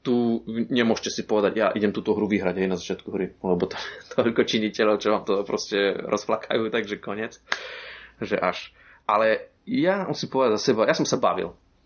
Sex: male